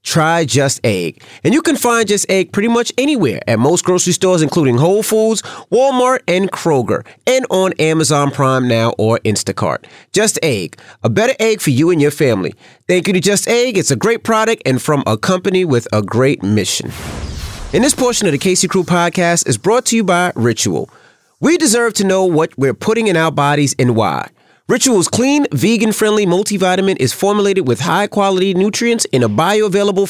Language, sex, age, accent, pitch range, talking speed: English, male, 30-49, American, 140-215 Hz, 185 wpm